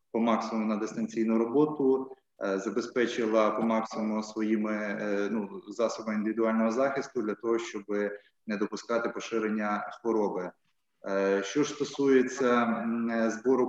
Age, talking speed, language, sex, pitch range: 20-39, 105 wpm, Ukrainian, male, 105-120 Hz